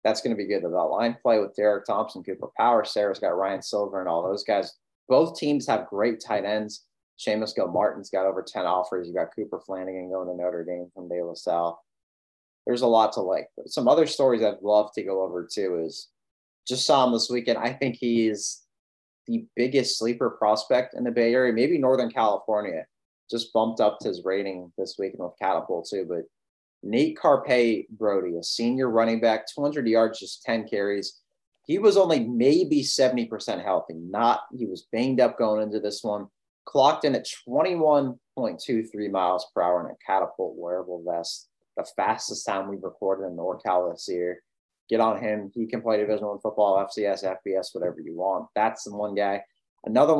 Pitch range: 95-115 Hz